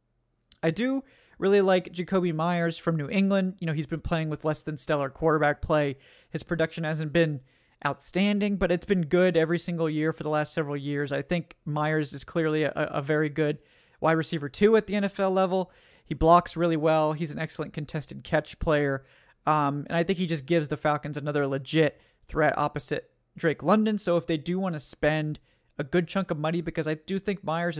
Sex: male